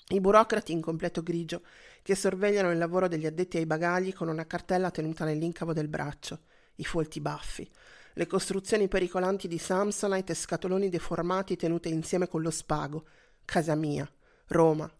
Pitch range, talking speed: 155-185 Hz, 155 wpm